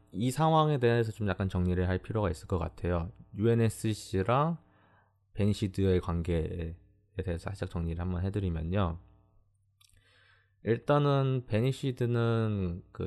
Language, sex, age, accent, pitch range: Korean, male, 20-39, native, 90-115 Hz